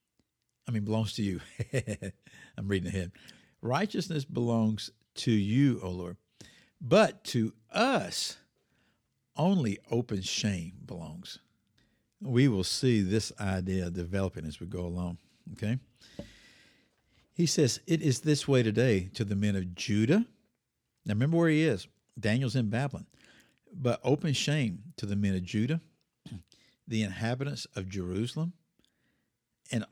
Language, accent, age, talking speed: English, American, 60-79, 130 wpm